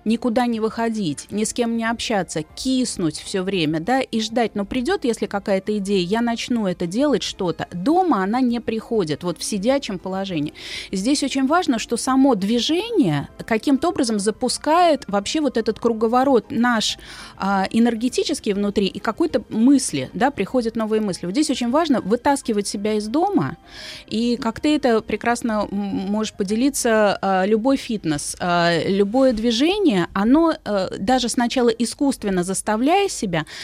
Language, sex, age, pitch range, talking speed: Russian, female, 30-49, 195-250 Hz, 145 wpm